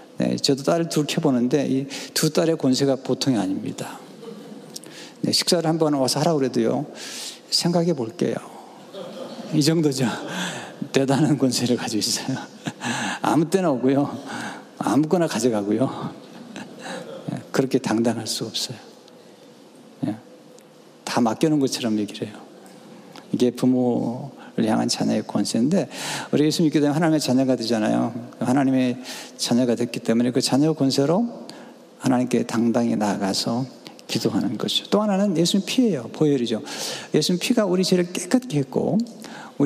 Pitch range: 125-180 Hz